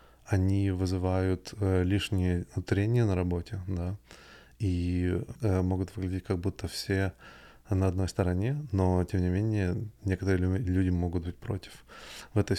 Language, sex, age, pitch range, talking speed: Russian, male, 20-39, 90-100 Hz, 130 wpm